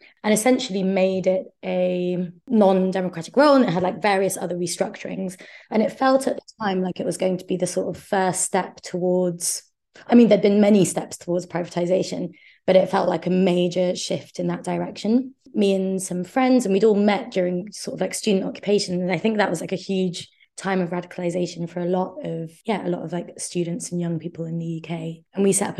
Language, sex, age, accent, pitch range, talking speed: English, female, 20-39, British, 180-205 Hz, 220 wpm